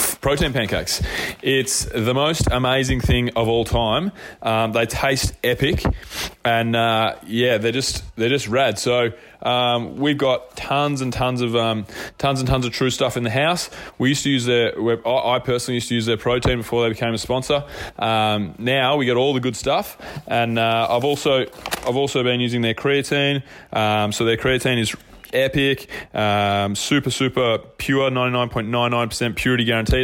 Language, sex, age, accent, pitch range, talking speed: English, male, 20-39, Australian, 115-130 Hz, 175 wpm